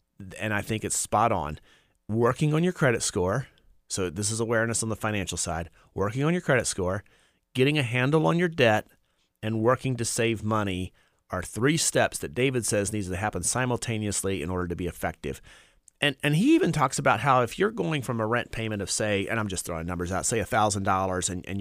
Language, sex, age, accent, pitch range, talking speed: English, male, 30-49, American, 100-125 Hz, 210 wpm